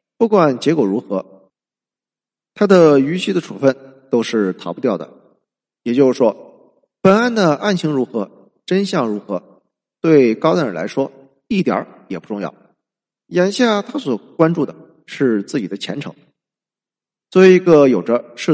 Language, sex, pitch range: Chinese, male, 125-200 Hz